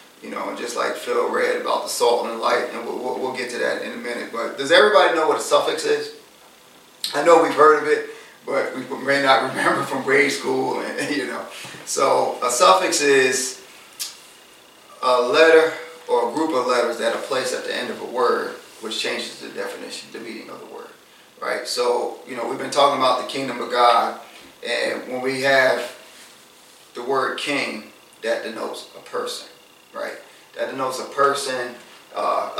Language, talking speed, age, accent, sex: English, 195 wpm, 30-49, American, male